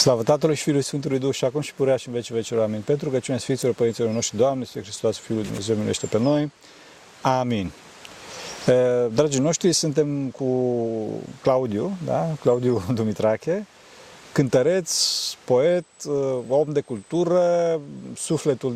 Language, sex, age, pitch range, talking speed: Romanian, male, 40-59, 120-155 Hz, 140 wpm